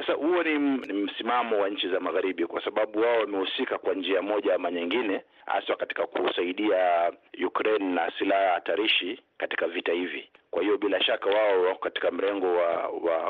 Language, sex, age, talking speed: Swahili, male, 50-69, 165 wpm